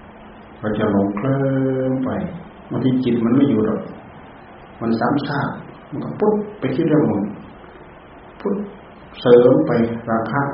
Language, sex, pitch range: Thai, male, 105-135 Hz